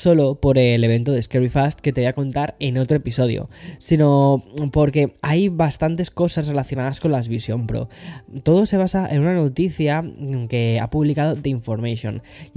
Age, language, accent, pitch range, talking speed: 10-29, Spanish, Spanish, 125-155 Hz, 175 wpm